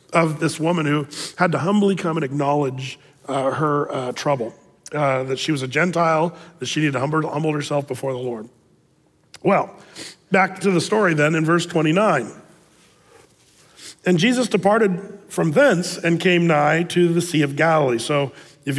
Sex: male